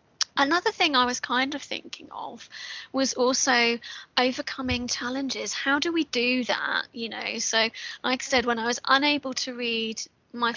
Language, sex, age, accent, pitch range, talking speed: English, female, 20-39, British, 230-275 Hz, 170 wpm